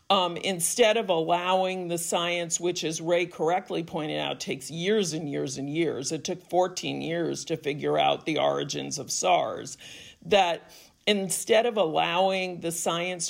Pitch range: 155-190 Hz